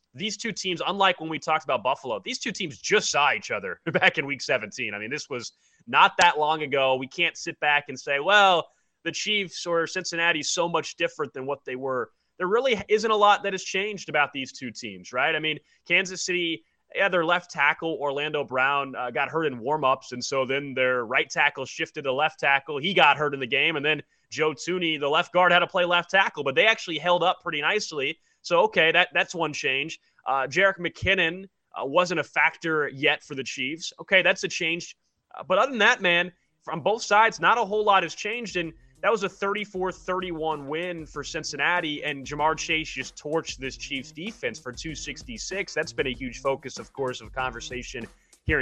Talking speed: 215 wpm